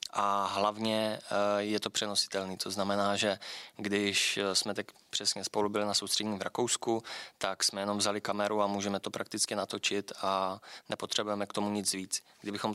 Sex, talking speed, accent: male, 165 wpm, native